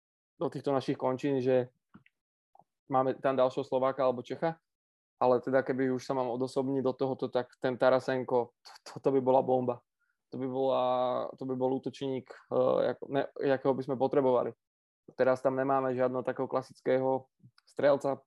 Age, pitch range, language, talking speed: 20-39, 125-135 Hz, Czech, 160 wpm